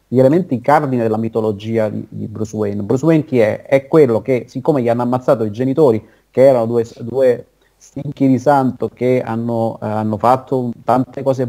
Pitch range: 110-130 Hz